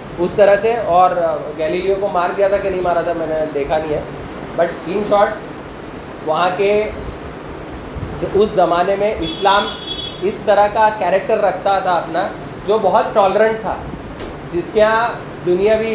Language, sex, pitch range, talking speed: Urdu, male, 170-200 Hz, 155 wpm